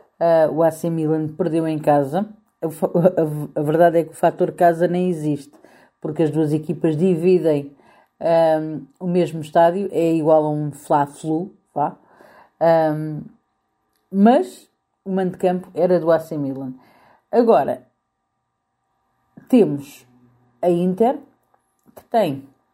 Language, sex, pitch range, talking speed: Portuguese, female, 155-210 Hz, 120 wpm